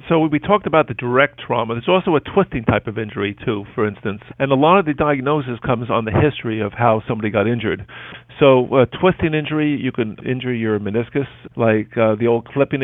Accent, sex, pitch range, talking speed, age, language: American, male, 115-135 Hz, 215 wpm, 50-69, English